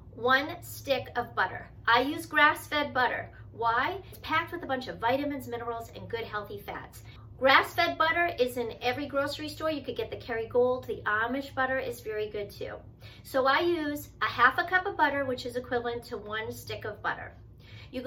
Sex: female